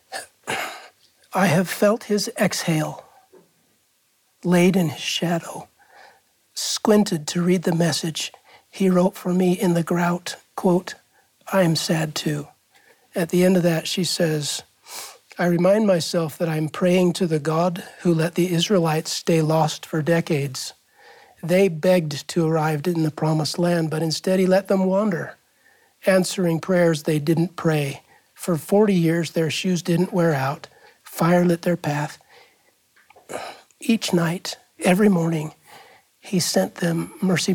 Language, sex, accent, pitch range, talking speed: English, male, American, 160-190 Hz, 140 wpm